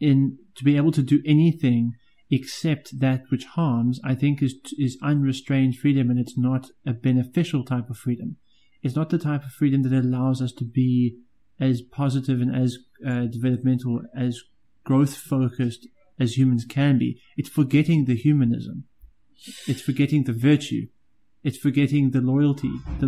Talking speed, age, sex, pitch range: 160 wpm, 30-49, male, 125-140 Hz